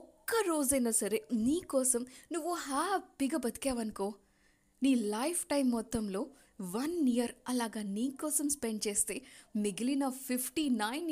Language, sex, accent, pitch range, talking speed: Telugu, female, native, 230-320 Hz, 105 wpm